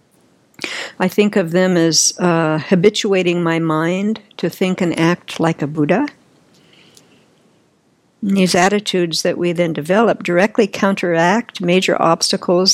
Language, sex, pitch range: English, female, 165-215 Hz